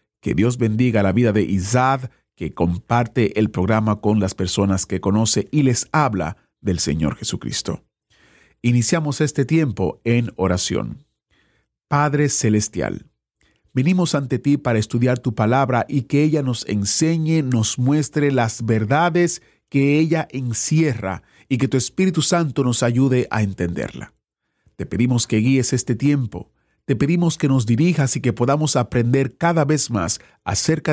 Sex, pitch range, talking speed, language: male, 105-145 Hz, 145 wpm, Spanish